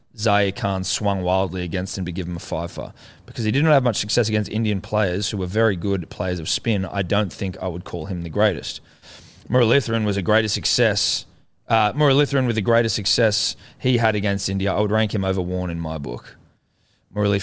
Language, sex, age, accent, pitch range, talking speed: English, male, 20-39, Australian, 95-120 Hz, 225 wpm